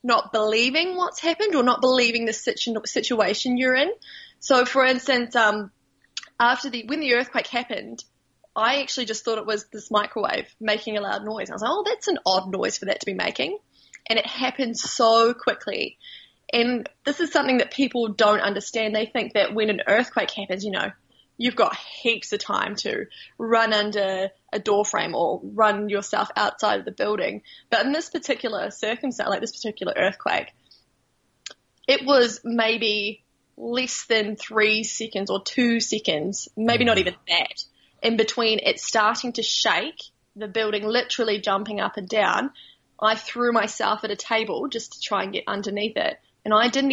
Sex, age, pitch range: female, 20-39, 210-245 Hz